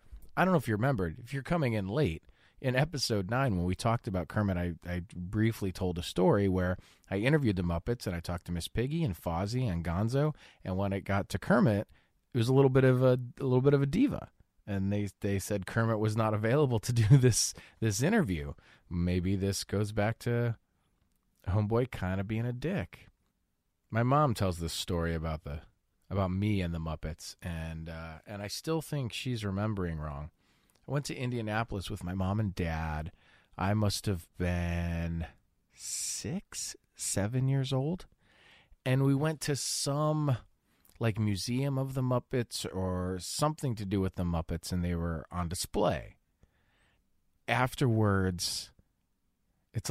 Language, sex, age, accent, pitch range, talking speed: English, male, 30-49, American, 90-120 Hz, 175 wpm